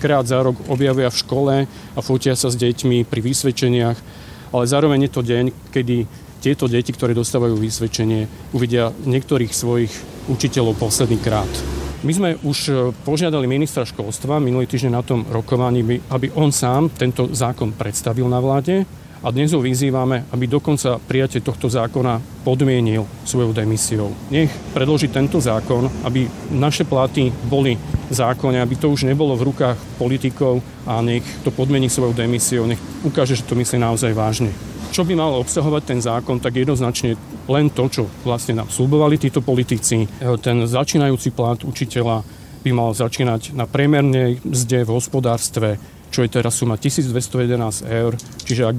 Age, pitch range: 40-59, 115-135 Hz